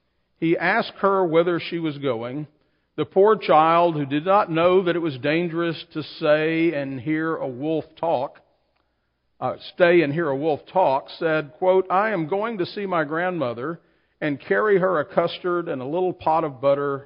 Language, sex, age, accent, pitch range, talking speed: English, male, 50-69, American, 130-170 Hz, 185 wpm